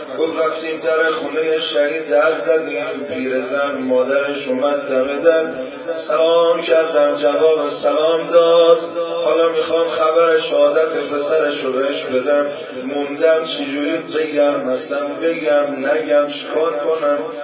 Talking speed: 110 wpm